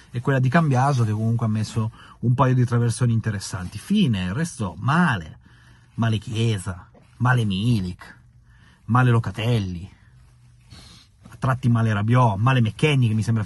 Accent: native